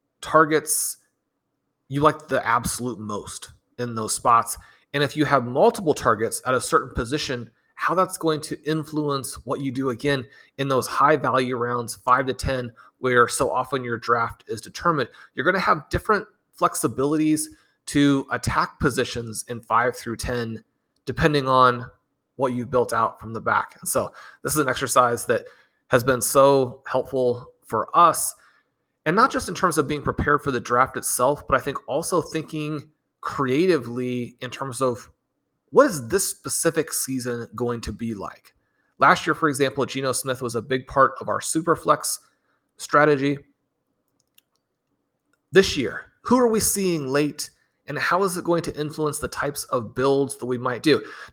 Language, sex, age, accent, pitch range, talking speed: English, male, 30-49, American, 120-150 Hz, 170 wpm